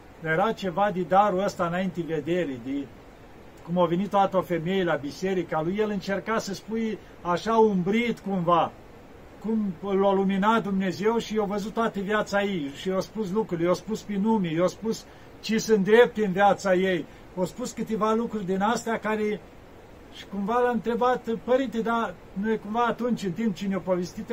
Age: 50-69